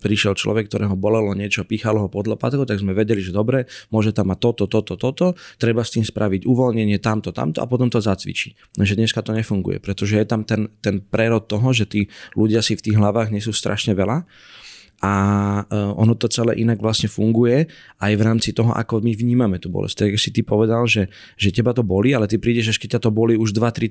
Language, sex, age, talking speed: Slovak, male, 20-39, 220 wpm